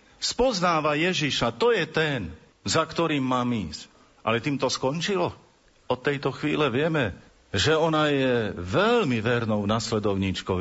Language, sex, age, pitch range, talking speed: Slovak, male, 50-69, 105-140 Hz, 125 wpm